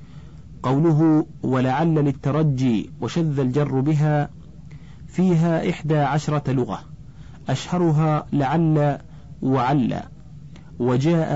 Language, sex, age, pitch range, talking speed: Arabic, male, 40-59, 135-155 Hz, 75 wpm